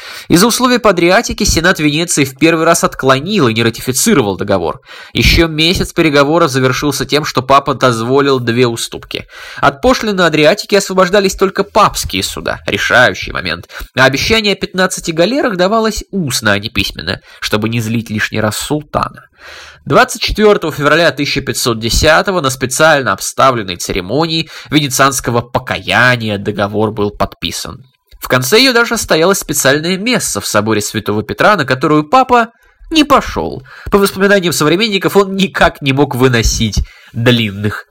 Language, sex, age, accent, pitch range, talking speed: Russian, male, 20-39, native, 115-185 Hz, 135 wpm